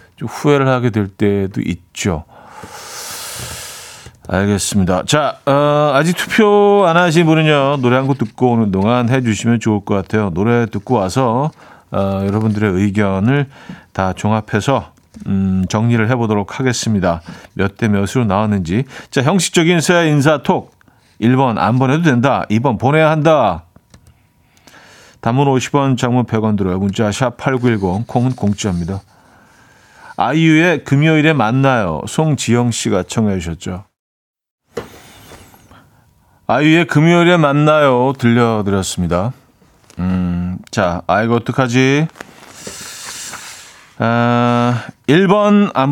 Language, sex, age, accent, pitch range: Korean, male, 40-59, native, 100-140 Hz